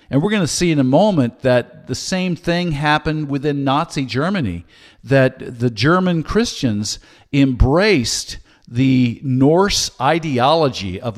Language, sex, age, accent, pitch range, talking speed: English, male, 50-69, American, 115-145 Hz, 135 wpm